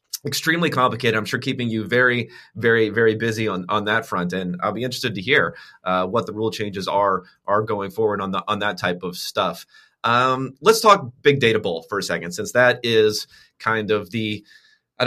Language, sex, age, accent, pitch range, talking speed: English, male, 30-49, American, 105-125 Hz, 210 wpm